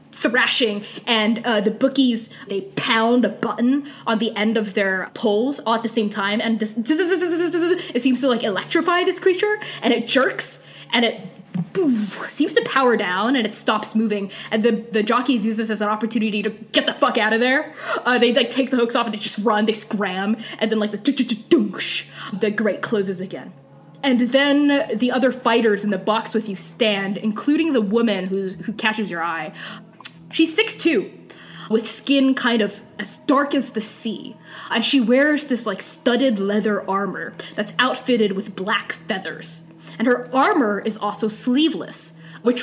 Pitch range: 210-250 Hz